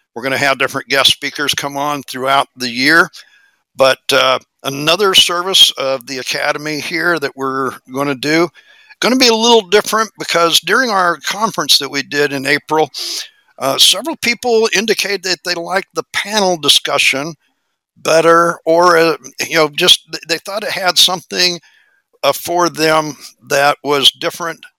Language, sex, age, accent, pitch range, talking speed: English, male, 60-79, American, 145-175 Hz, 160 wpm